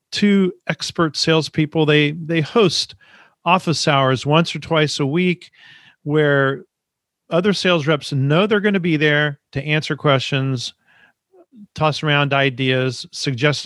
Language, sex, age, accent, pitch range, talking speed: English, male, 40-59, American, 130-160 Hz, 125 wpm